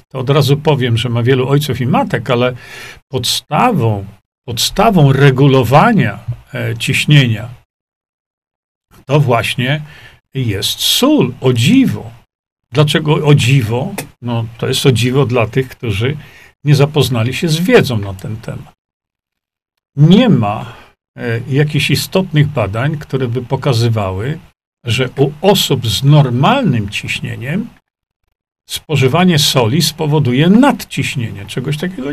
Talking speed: 110 wpm